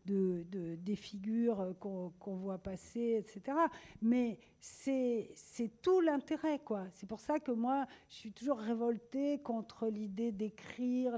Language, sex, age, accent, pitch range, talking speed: English, female, 50-69, French, 195-245 Hz, 145 wpm